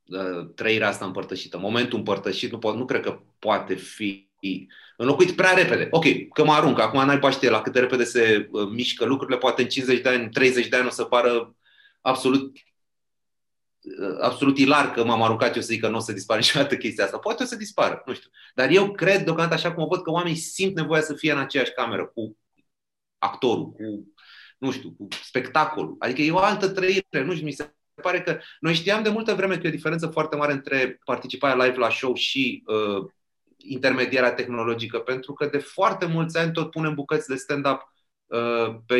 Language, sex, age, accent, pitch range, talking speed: Romanian, male, 30-49, native, 125-170 Hz, 205 wpm